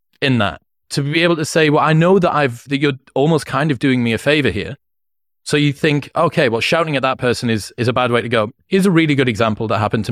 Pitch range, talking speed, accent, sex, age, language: 110-145 Hz, 275 wpm, British, male, 30-49, English